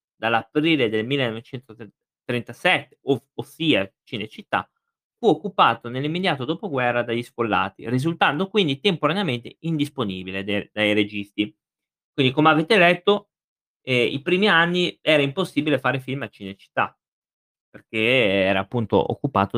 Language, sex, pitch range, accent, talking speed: Italian, male, 120-160 Hz, native, 115 wpm